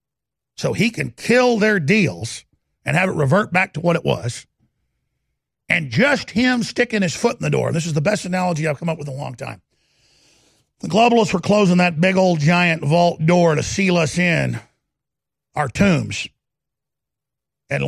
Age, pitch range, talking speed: 50-69, 140-210 Hz, 180 wpm